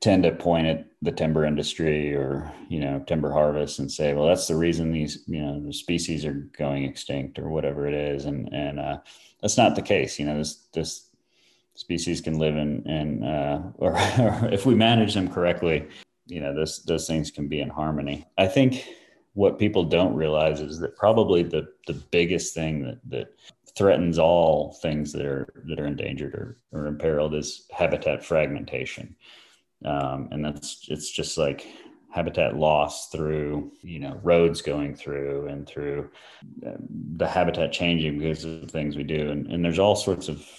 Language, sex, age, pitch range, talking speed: English, male, 30-49, 75-85 Hz, 180 wpm